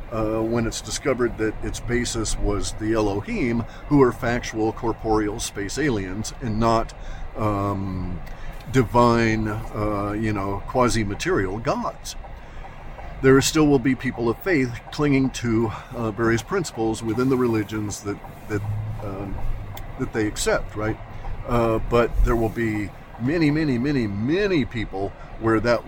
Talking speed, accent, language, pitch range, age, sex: 135 wpm, American, English, 100-125 Hz, 50-69, male